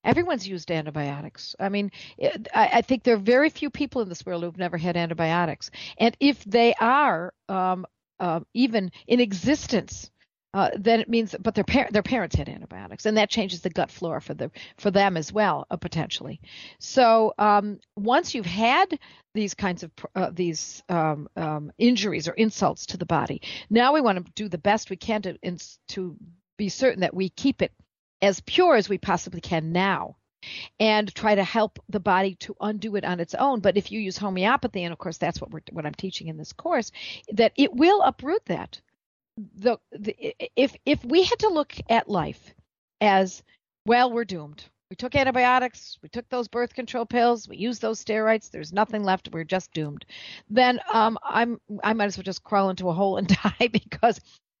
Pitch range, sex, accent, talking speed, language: 180-240 Hz, female, American, 200 wpm, English